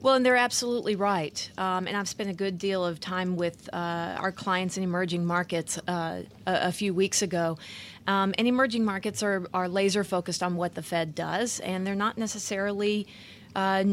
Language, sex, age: English, female, 30-49